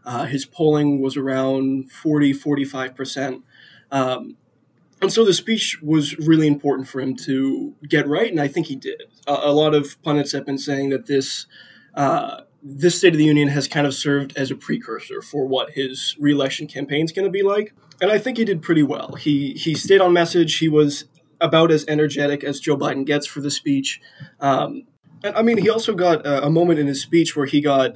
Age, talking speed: 20-39, 205 wpm